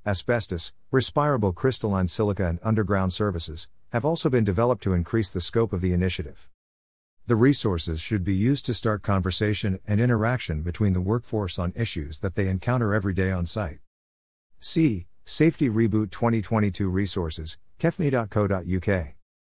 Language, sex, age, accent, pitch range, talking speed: English, male, 50-69, American, 85-110 Hz, 140 wpm